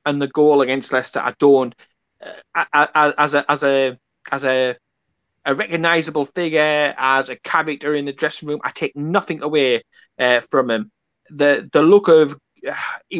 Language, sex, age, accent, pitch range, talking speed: English, male, 30-49, British, 130-160 Hz, 175 wpm